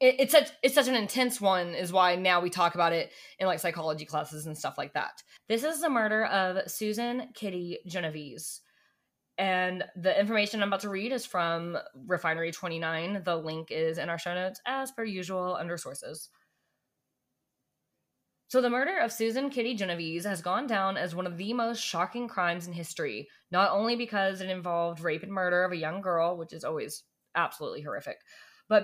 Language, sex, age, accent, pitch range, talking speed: English, female, 20-39, American, 175-220 Hz, 185 wpm